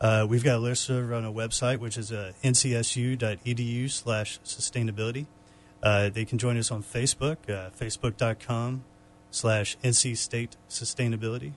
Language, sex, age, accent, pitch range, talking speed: English, male, 30-49, American, 100-130 Hz, 145 wpm